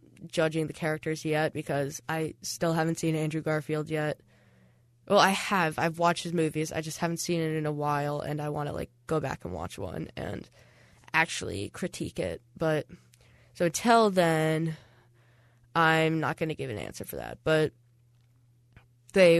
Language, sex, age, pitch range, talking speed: English, female, 10-29, 120-170 Hz, 175 wpm